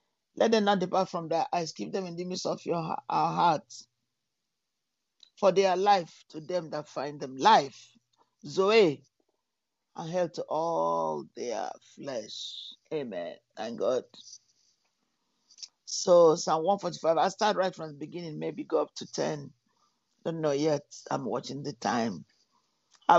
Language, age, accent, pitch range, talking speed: English, 50-69, Nigerian, 160-205 Hz, 150 wpm